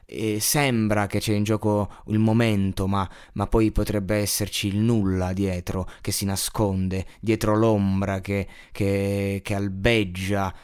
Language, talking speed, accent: Italian, 130 wpm, native